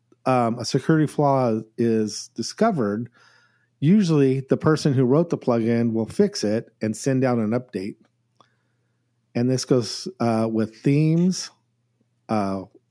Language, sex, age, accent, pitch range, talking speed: English, male, 50-69, American, 115-135 Hz, 130 wpm